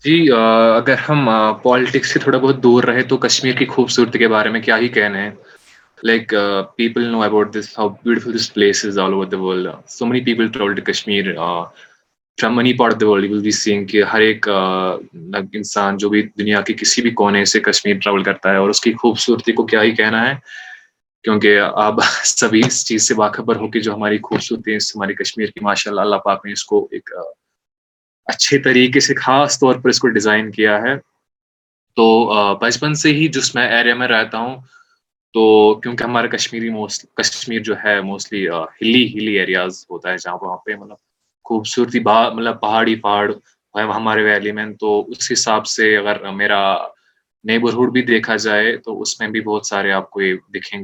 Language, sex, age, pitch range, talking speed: Urdu, male, 20-39, 100-120 Hz, 170 wpm